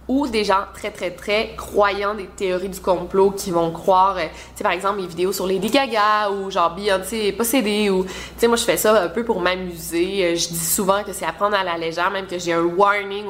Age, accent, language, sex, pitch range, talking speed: 20-39, Canadian, French, female, 180-215 Hz, 245 wpm